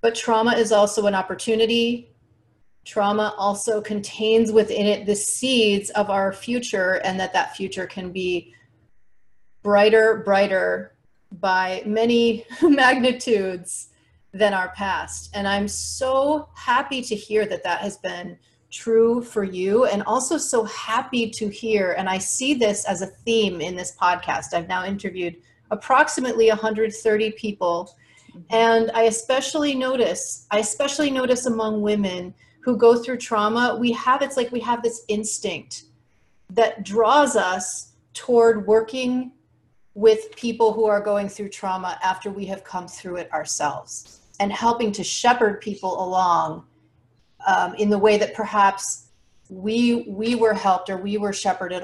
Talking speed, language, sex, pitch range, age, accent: 145 wpm, English, female, 185-230 Hz, 30-49, American